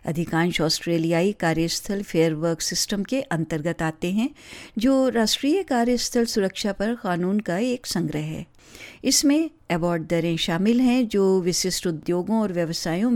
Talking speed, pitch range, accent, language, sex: 135 wpm, 175-240 Hz, native, Hindi, female